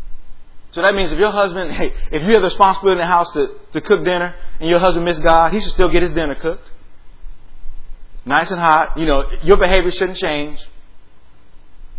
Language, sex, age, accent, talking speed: English, male, 30-49, American, 200 wpm